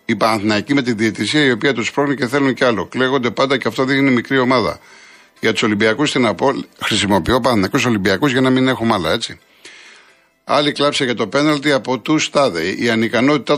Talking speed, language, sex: 200 wpm, Greek, male